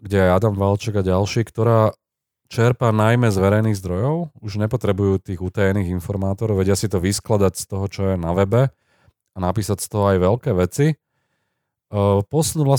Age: 30-49